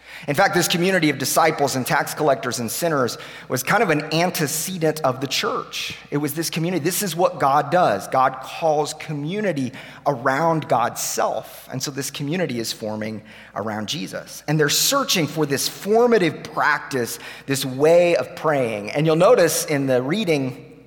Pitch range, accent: 130-160 Hz, American